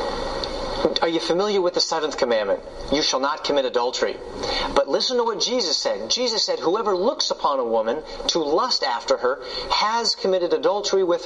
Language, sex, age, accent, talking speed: English, male, 40-59, American, 175 wpm